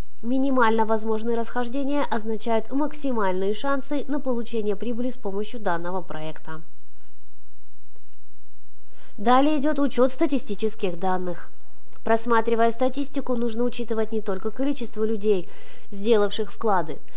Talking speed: 100 wpm